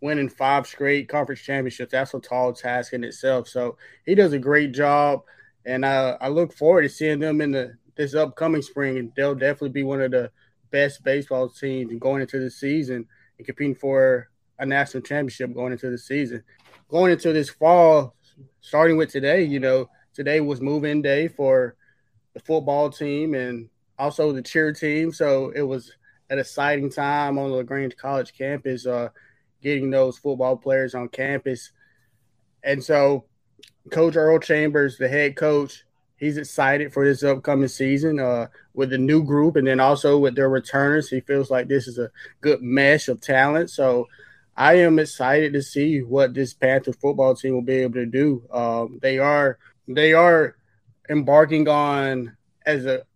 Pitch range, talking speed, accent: 130-145 Hz, 170 wpm, American